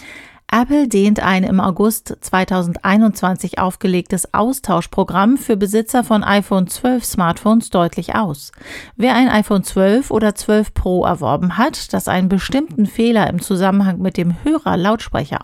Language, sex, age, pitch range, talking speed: German, female, 40-59, 185-230 Hz, 125 wpm